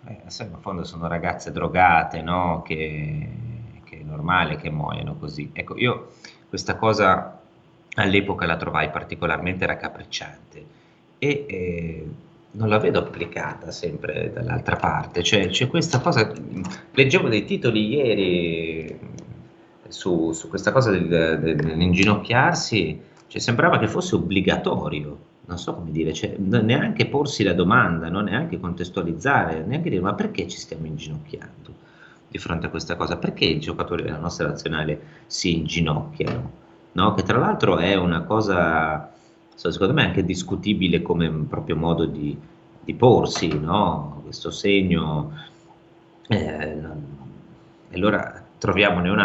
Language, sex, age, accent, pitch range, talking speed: Italian, male, 30-49, native, 80-105 Hz, 135 wpm